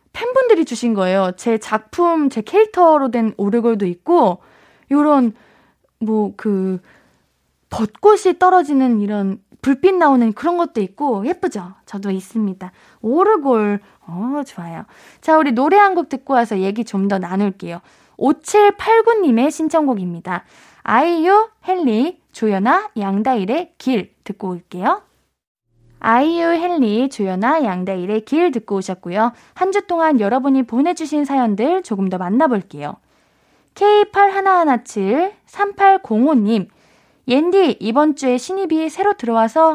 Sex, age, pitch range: female, 20-39, 210-335 Hz